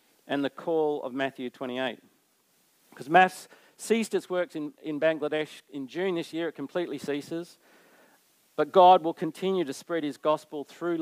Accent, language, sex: Australian, English, male